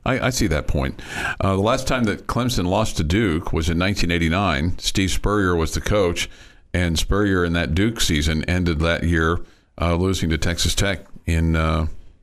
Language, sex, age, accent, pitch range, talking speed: English, male, 50-69, American, 85-100 Hz, 185 wpm